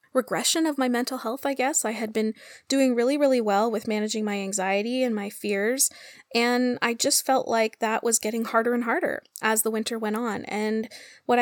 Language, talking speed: English, 205 wpm